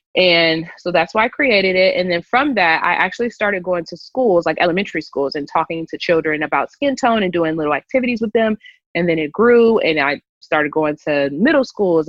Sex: female